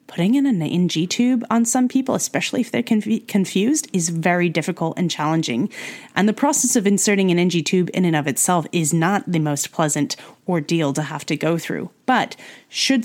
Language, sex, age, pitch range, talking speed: English, female, 30-49, 165-215 Hz, 195 wpm